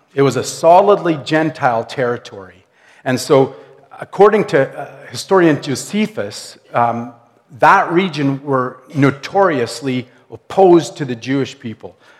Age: 50-69